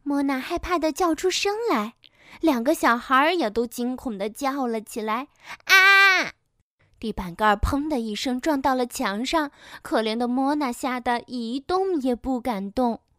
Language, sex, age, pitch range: Chinese, female, 10-29, 215-305 Hz